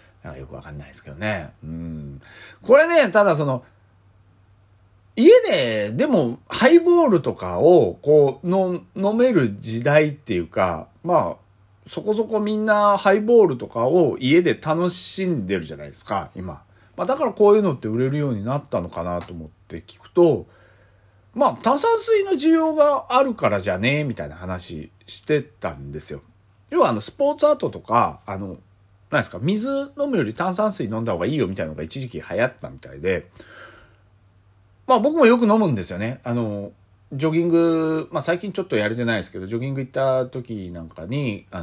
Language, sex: Japanese, male